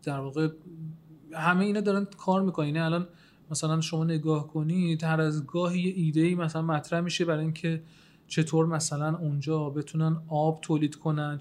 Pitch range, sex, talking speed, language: 155-185 Hz, male, 160 wpm, Persian